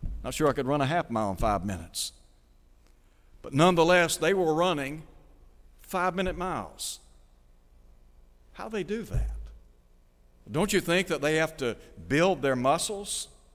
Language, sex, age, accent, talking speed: English, male, 60-79, American, 145 wpm